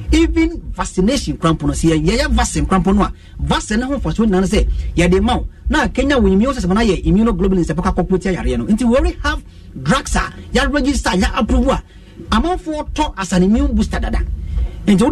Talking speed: 180 wpm